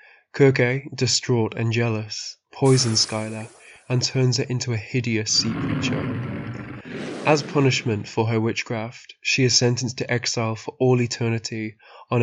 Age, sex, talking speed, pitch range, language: 20-39, male, 135 wpm, 110-130 Hz, English